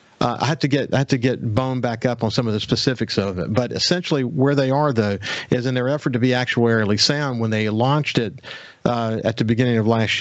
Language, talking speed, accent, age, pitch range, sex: English, 245 wpm, American, 50-69, 115-145 Hz, male